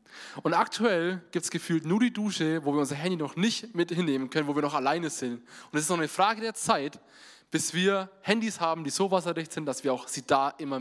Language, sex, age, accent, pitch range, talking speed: German, male, 20-39, German, 130-175 Hz, 245 wpm